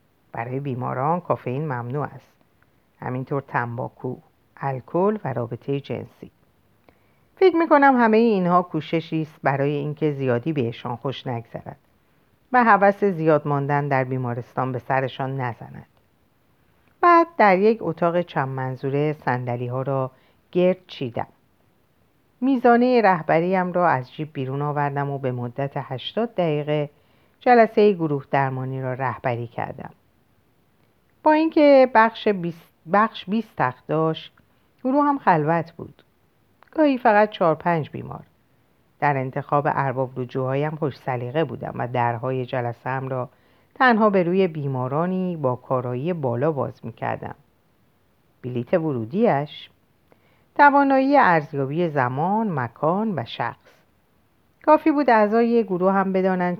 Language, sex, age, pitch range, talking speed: Persian, female, 50-69, 130-190 Hz, 120 wpm